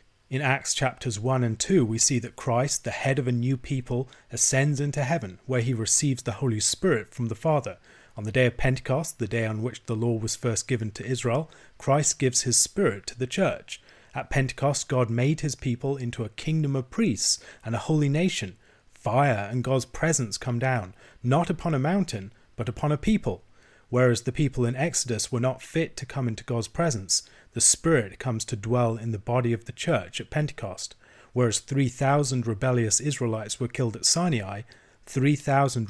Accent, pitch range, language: British, 115-140 Hz, English